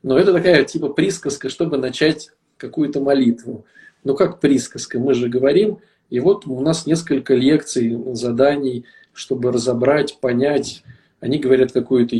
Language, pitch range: Russian, 125-160 Hz